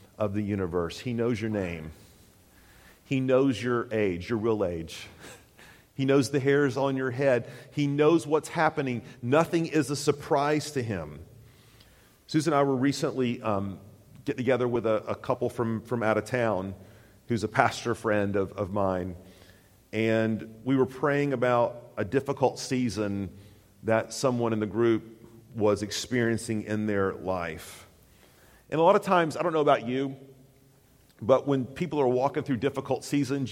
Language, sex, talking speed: English, male, 165 wpm